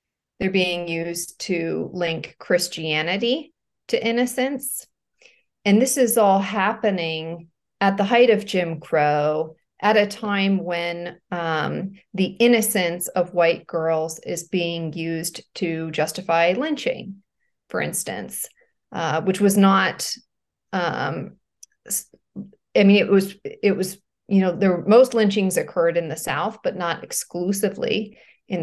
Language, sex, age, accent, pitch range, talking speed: English, female, 40-59, American, 170-205 Hz, 130 wpm